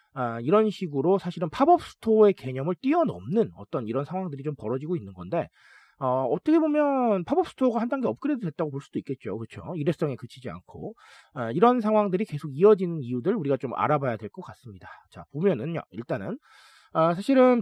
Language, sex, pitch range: Korean, male, 145-235 Hz